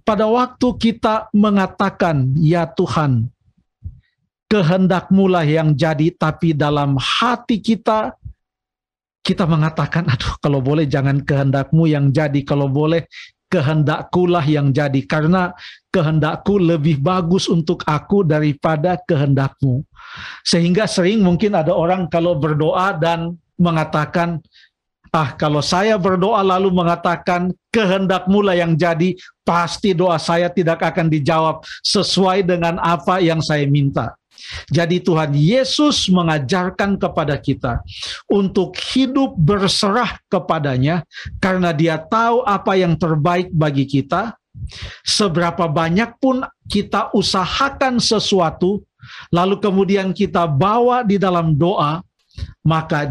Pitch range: 155-195 Hz